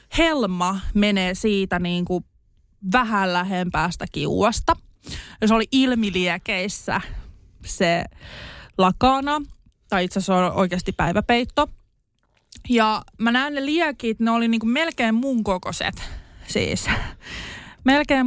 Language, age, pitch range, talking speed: Finnish, 20-39, 185-255 Hz, 110 wpm